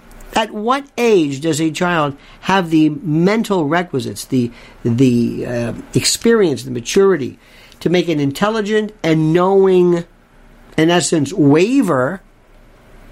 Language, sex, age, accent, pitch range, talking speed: English, male, 50-69, American, 140-210 Hz, 115 wpm